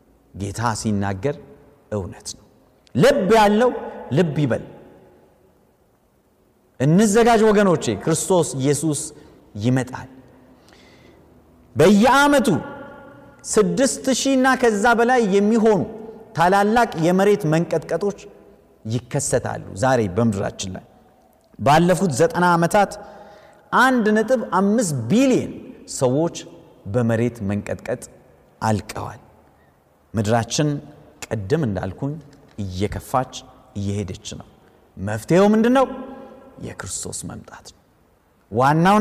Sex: male